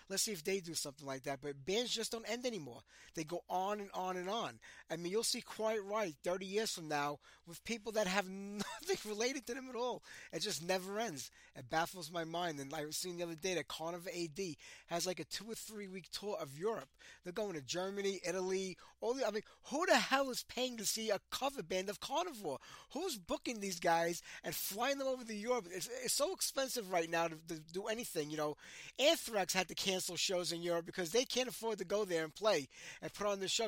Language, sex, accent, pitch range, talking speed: English, male, American, 160-220 Hz, 235 wpm